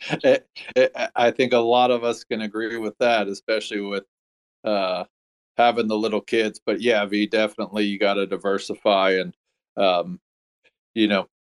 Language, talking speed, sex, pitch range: English, 165 wpm, male, 100-115 Hz